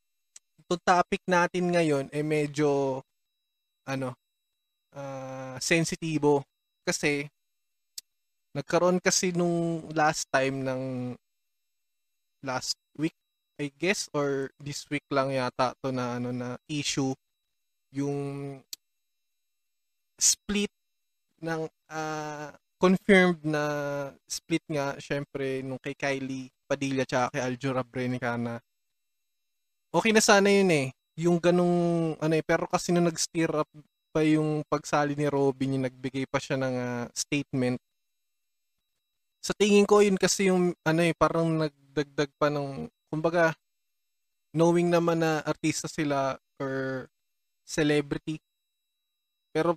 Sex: male